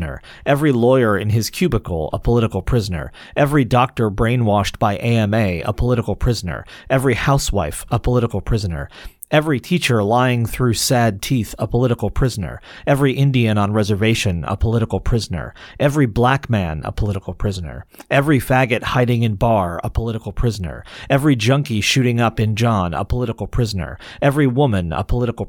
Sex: male